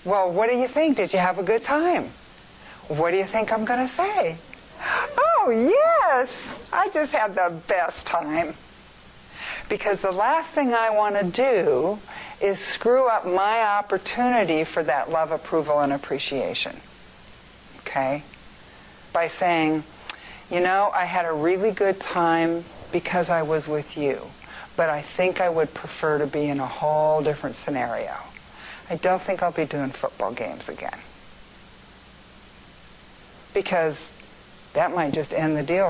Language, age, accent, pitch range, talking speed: English, 60-79, American, 155-220 Hz, 150 wpm